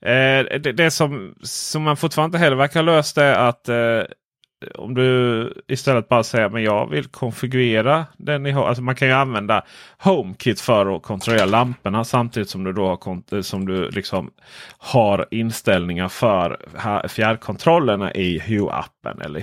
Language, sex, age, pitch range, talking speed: Swedish, male, 30-49, 100-135 Hz, 150 wpm